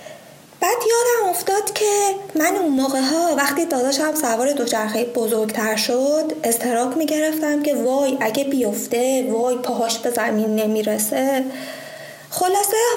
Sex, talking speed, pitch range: female, 115 wpm, 250-355 Hz